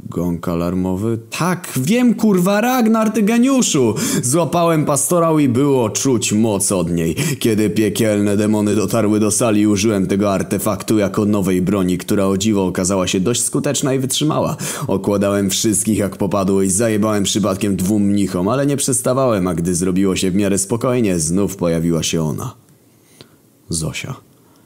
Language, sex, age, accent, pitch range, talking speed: Polish, male, 20-39, native, 90-120 Hz, 145 wpm